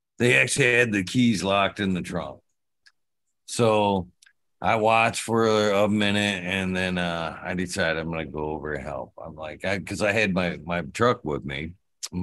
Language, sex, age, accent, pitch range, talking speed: English, male, 50-69, American, 90-120 Hz, 195 wpm